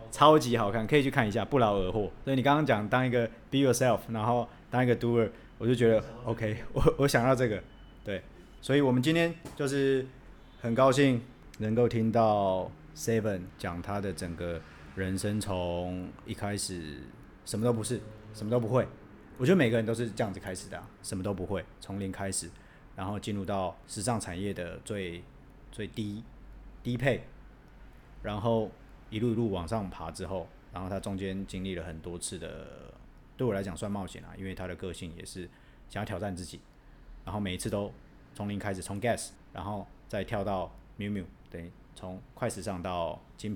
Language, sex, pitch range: Chinese, male, 90-115 Hz